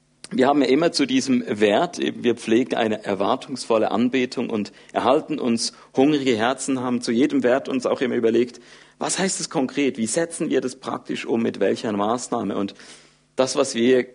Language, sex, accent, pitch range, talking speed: German, male, German, 110-125 Hz, 180 wpm